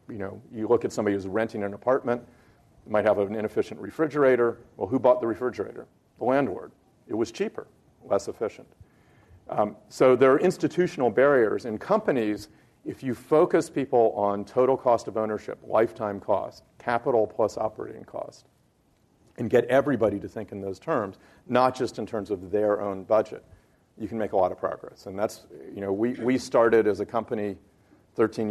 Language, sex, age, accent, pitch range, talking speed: English, male, 40-59, American, 105-125 Hz, 175 wpm